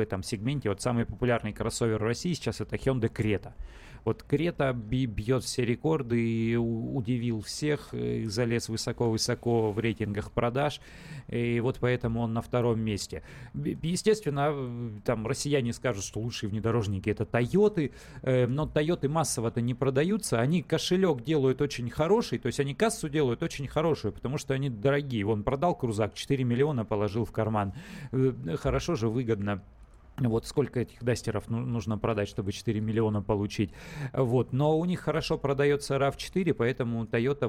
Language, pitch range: Russian, 115-145 Hz